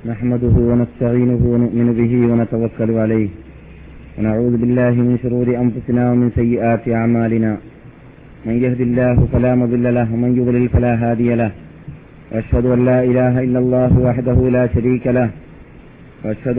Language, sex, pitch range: Malayalam, male, 120-130 Hz